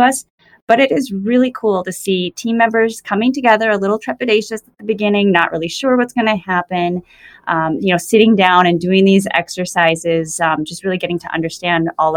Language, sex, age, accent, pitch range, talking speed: English, female, 20-39, American, 155-195 Hz, 195 wpm